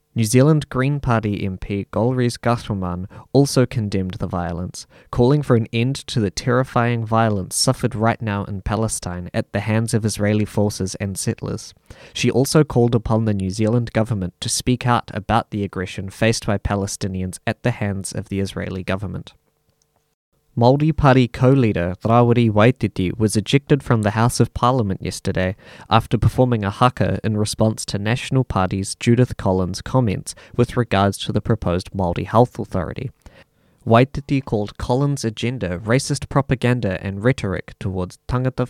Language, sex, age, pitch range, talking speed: English, male, 20-39, 100-125 Hz, 155 wpm